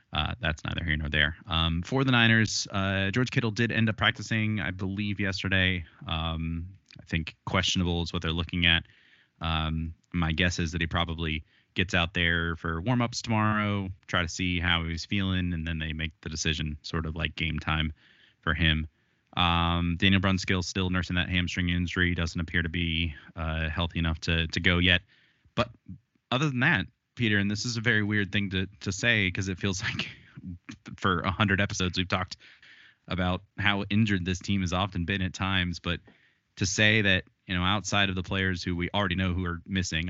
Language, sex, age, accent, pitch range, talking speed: English, male, 20-39, American, 85-105 Hz, 195 wpm